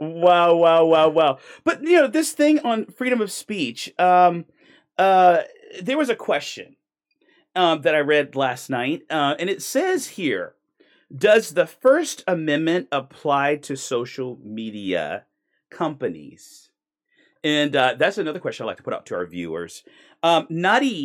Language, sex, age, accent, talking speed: English, male, 40-59, American, 150 wpm